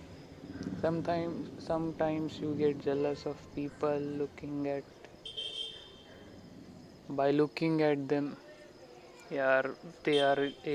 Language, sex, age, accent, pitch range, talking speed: Marathi, male, 20-39, native, 140-160 Hz, 95 wpm